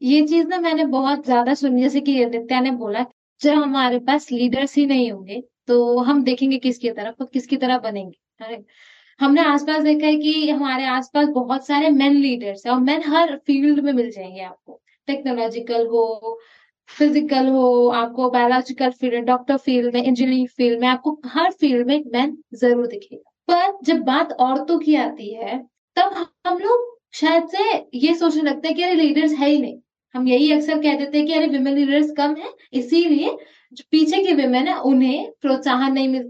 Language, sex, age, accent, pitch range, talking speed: Hindi, female, 20-39, native, 250-305 Hz, 165 wpm